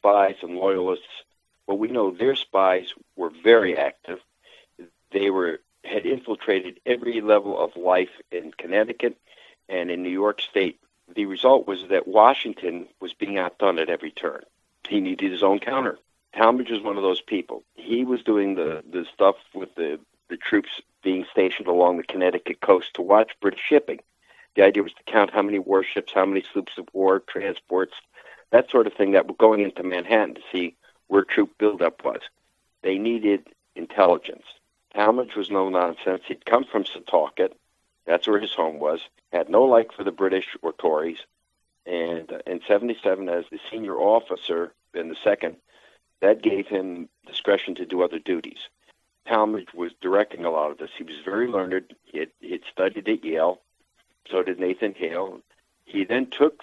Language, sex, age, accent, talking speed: English, male, 60-79, American, 170 wpm